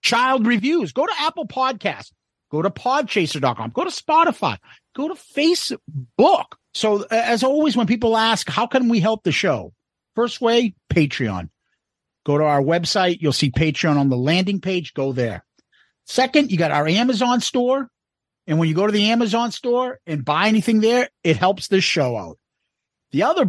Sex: male